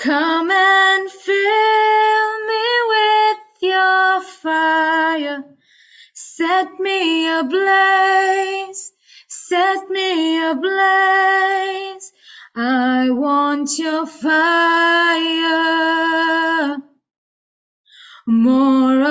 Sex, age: female, 20-39